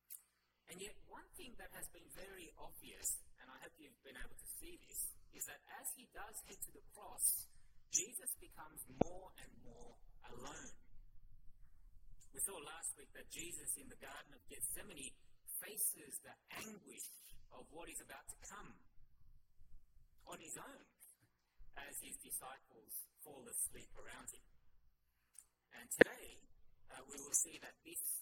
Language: English